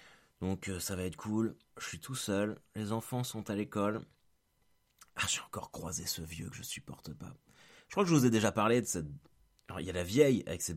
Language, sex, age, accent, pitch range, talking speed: French, male, 30-49, French, 90-125 Hz, 240 wpm